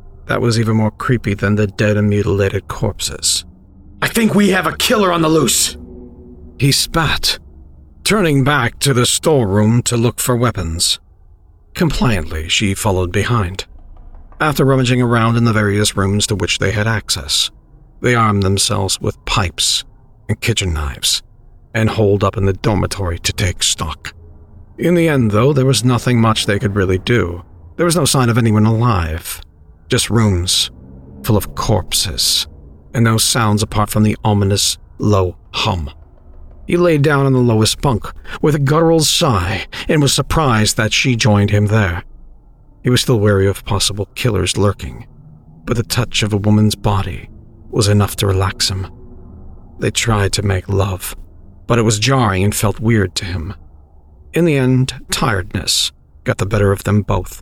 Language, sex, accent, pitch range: English, male, American, 90-120 Hz